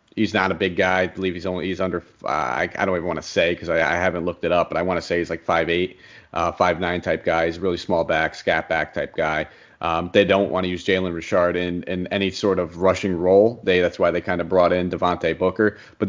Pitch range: 90-105 Hz